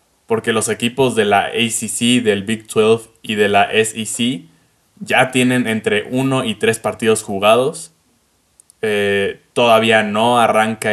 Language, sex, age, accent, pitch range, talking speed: Spanish, male, 20-39, Mexican, 105-120 Hz, 135 wpm